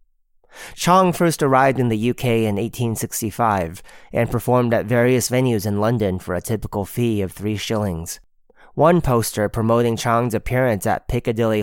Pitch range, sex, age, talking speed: 100-120 Hz, male, 30-49, 165 wpm